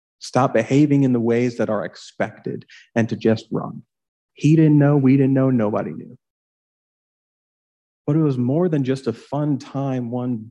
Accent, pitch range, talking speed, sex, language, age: American, 115-135 Hz, 170 wpm, male, English, 40-59